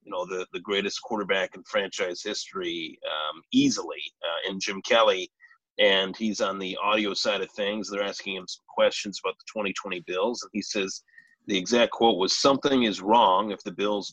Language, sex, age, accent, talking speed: English, male, 30-49, American, 190 wpm